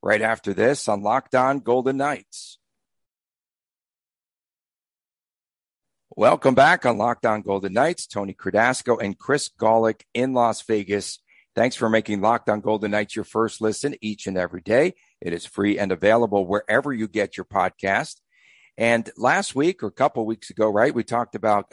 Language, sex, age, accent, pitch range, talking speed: English, male, 50-69, American, 105-125 Hz, 155 wpm